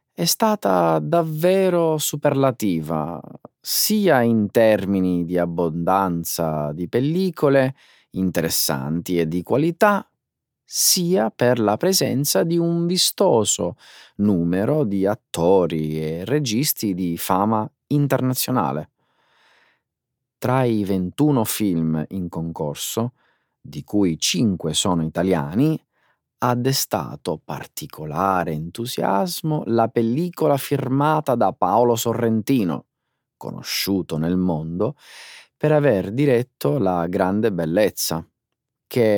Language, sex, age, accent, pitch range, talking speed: Italian, male, 30-49, native, 85-145 Hz, 95 wpm